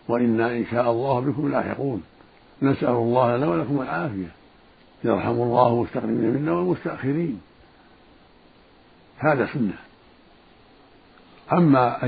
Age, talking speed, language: 60-79, 100 wpm, Arabic